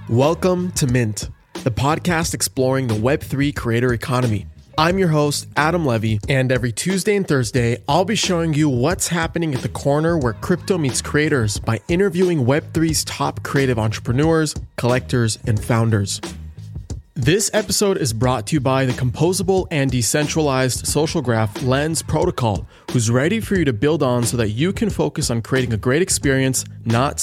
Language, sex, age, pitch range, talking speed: English, male, 20-39, 115-155 Hz, 165 wpm